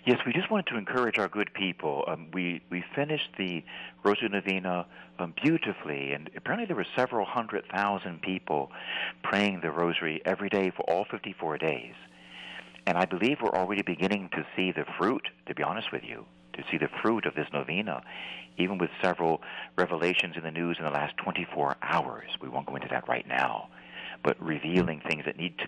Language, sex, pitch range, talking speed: English, male, 75-100 Hz, 195 wpm